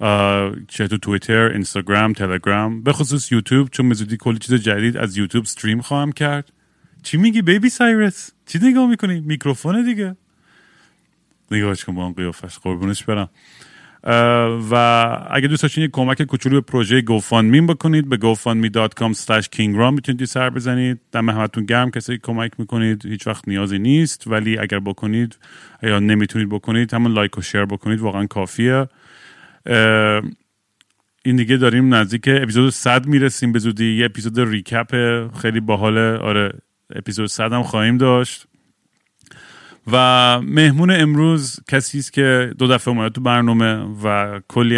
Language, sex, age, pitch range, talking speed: Persian, male, 30-49, 110-130 Hz, 140 wpm